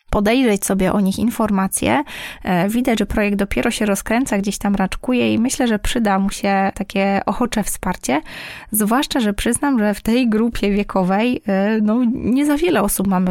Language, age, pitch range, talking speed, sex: Polish, 20-39, 195-240 Hz, 160 wpm, female